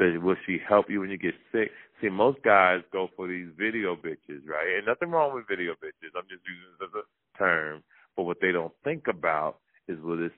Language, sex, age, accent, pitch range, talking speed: English, male, 30-49, American, 85-95 Hz, 230 wpm